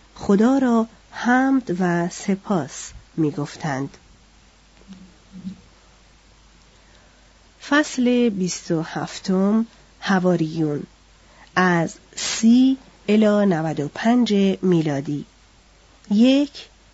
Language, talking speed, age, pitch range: Persian, 55 wpm, 40-59, 175-220 Hz